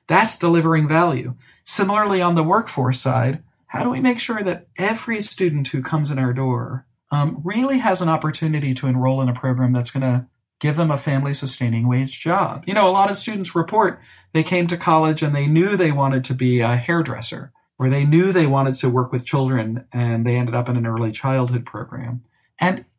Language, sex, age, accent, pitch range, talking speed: English, male, 40-59, American, 130-175 Hz, 210 wpm